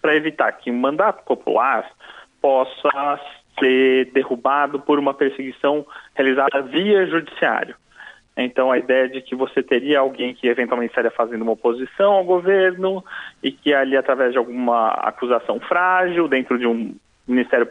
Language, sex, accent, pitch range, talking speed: Portuguese, male, Brazilian, 125-185 Hz, 145 wpm